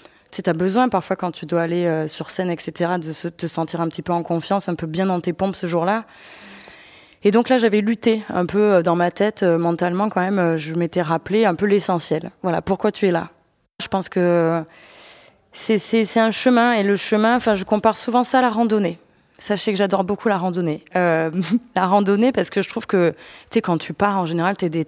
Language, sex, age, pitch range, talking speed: French, female, 20-39, 175-215 Hz, 235 wpm